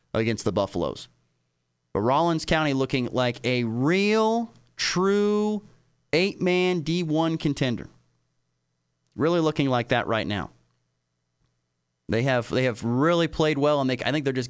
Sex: male